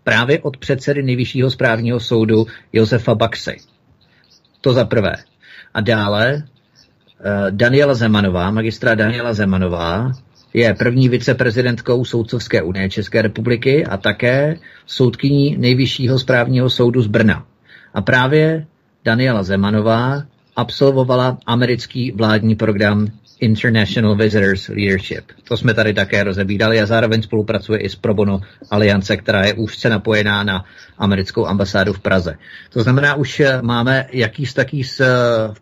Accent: native